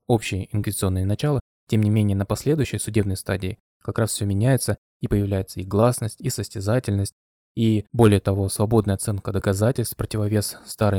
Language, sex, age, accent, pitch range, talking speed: Russian, male, 20-39, native, 100-115 Hz, 155 wpm